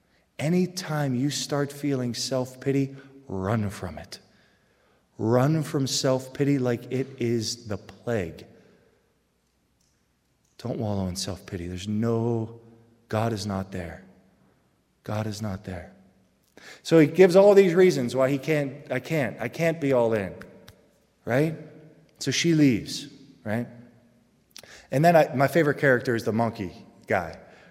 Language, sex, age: English, male, 30-49